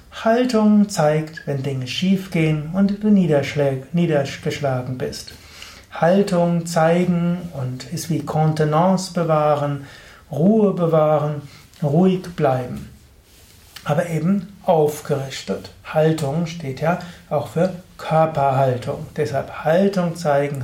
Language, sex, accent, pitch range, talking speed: German, male, German, 140-180 Hz, 95 wpm